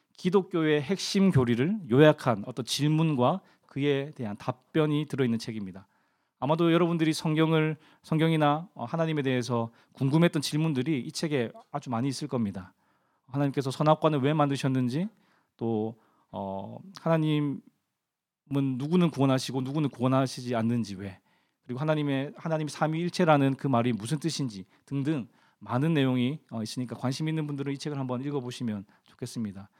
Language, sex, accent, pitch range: Korean, male, native, 125-160 Hz